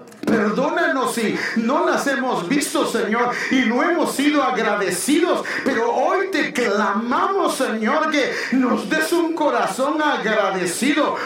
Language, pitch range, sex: English, 235-300 Hz, male